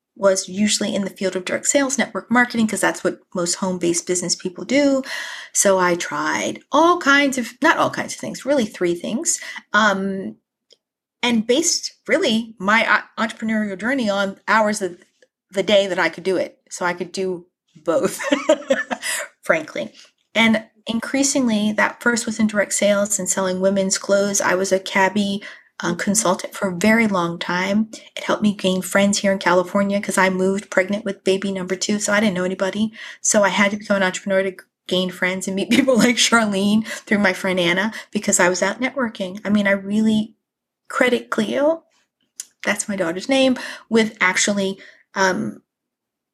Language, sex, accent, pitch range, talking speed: English, female, American, 190-230 Hz, 175 wpm